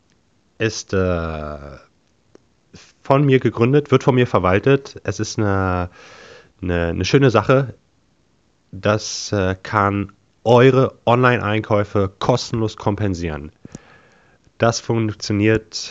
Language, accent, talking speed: German, German, 95 wpm